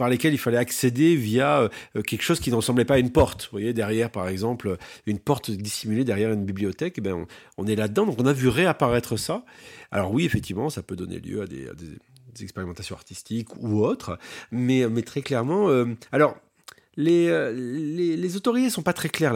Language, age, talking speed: French, 40-59, 205 wpm